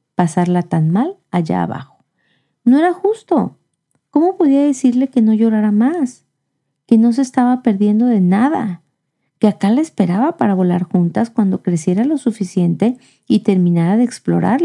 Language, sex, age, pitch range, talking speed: Spanish, female, 40-59, 165-235 Hz, 150 wpm